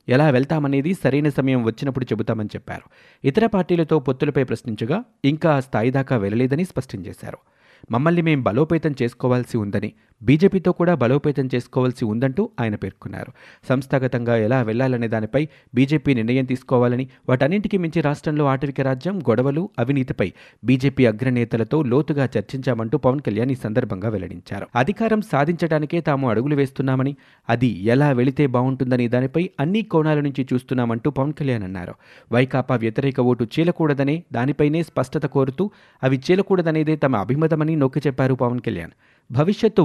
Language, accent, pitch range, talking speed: Telugu, native, 125-155 Hz, 125 wpm